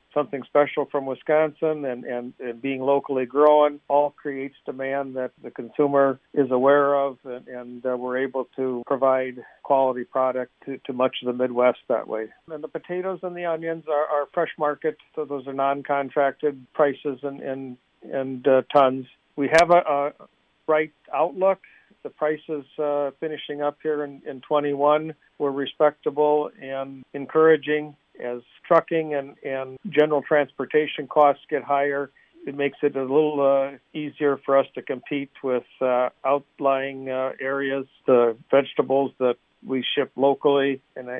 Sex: male